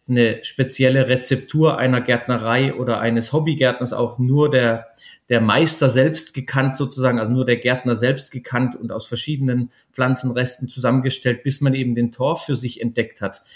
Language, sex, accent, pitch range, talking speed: German, male, German, 120-140 Hz, 160 wpm